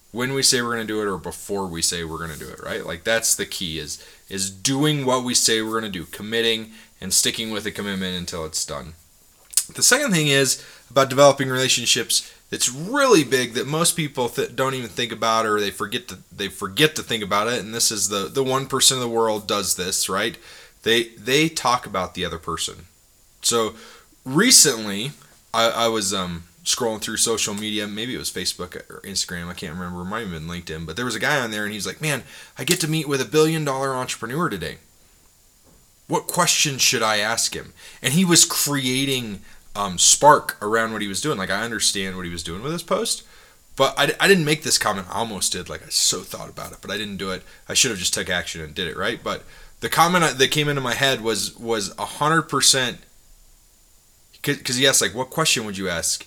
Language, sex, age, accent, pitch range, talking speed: English, male, 20-39, American, 100-135 Hz, 225 wpm